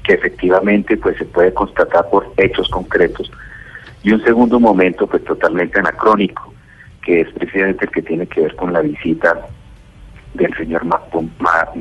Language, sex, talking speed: Spanish, male, 160 wpm